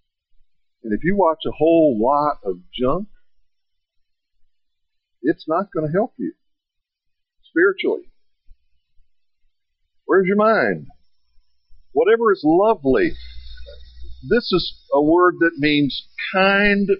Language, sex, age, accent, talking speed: English, male, 50-69, American, 100 wpm